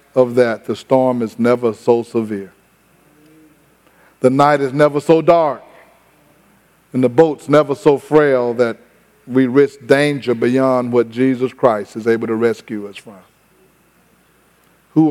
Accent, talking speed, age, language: American, 140 wpm, 50-69, English